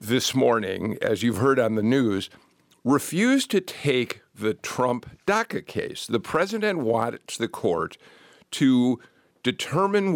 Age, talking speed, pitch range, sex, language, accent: 50-69, 125 wpm, 120-180 Hz, male, English, American